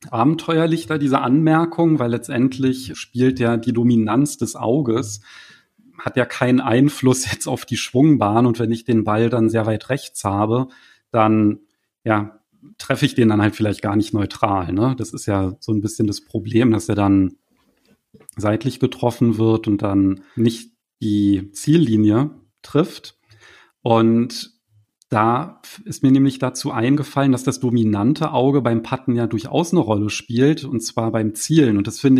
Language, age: German, 40-59